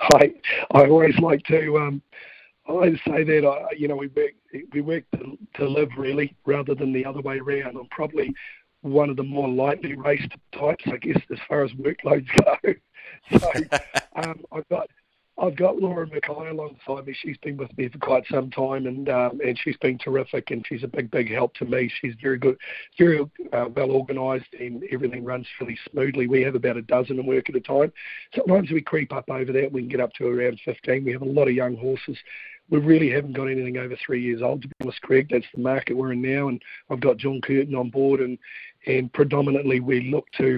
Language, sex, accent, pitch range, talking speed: English, male, Australian, 130-145 Hz, 220 wpm